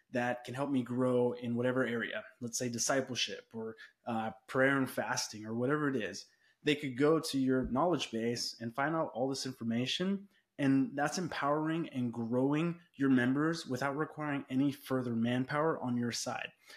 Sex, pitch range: male, 125-150 Hz